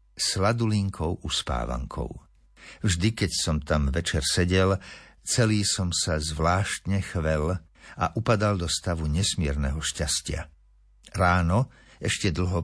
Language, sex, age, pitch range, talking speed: Slovak, male, 60-79, 85-105 Hz, 105 wpm